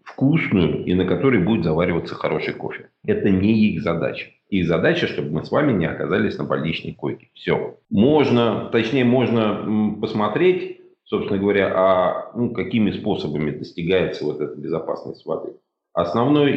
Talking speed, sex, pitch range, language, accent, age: 145 wpm, male, 80-115 Hz, Russian, native, 40-59